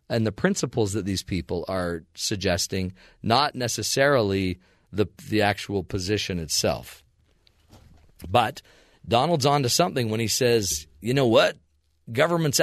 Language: English